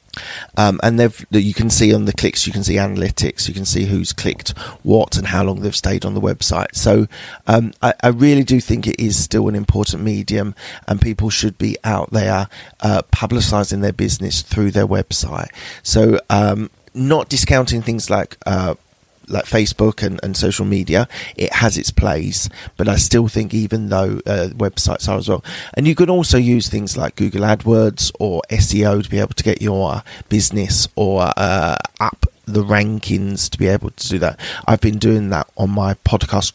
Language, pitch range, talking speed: English, 95-110 Hz, 190 wpm